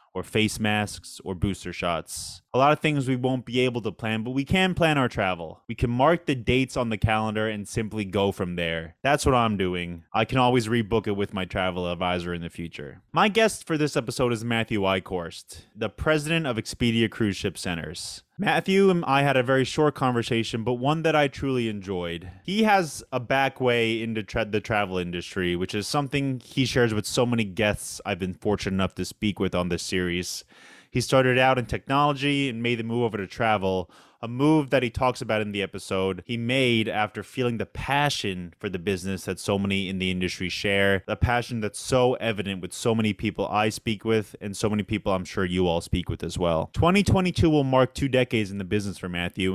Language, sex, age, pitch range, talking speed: English, male, 20-39, 95-125 Hz, 215 wpm